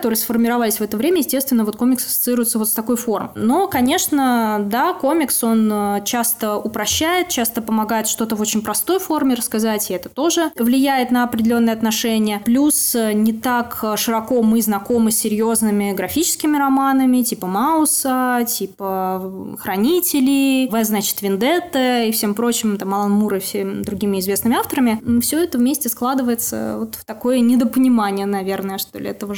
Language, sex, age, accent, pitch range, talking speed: Russian, female, 20-39, native, 215-250 Hz, 155 wpm